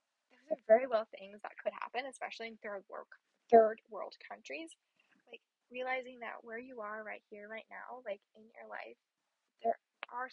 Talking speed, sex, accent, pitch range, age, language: 175 wpm, female, American, 215-250 Hz, 10-29, English